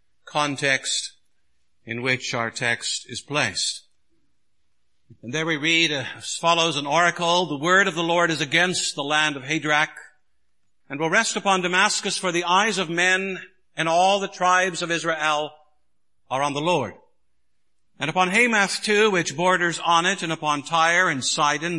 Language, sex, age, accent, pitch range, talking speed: English, male, 60-79, American, 145-180 Hz, 165 wpm